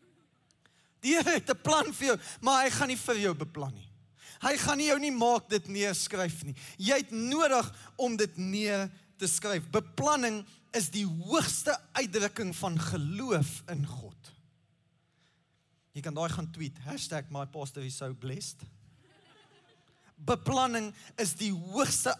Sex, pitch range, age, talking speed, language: male, 150-195 Hz, 20-39, 145 wpm, English